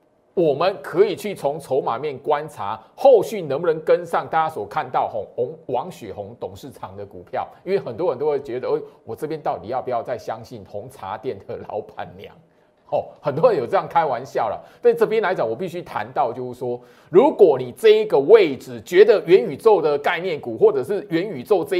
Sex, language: male, Chinese